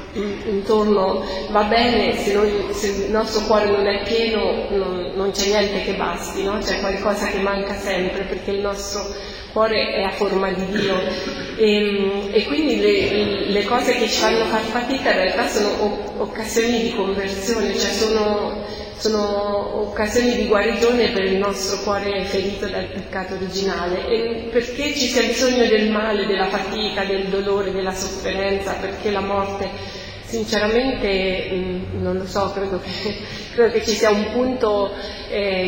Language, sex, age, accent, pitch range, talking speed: Italian, female, 30-49, native, 195-215 Hz, 160 wpm